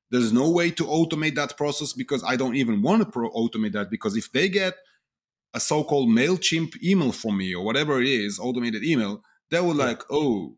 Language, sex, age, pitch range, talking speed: English, male, 30-49, 115-160 Hz, 200 wpm